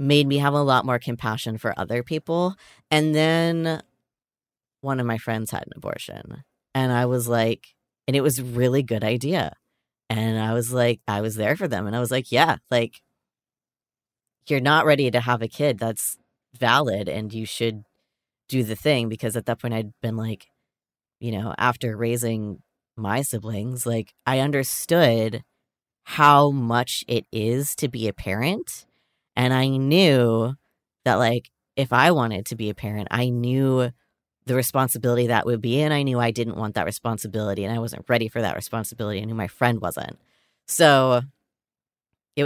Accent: American